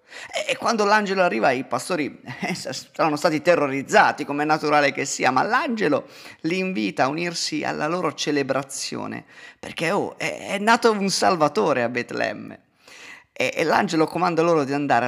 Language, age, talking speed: Italian, 30-49, 155 wpm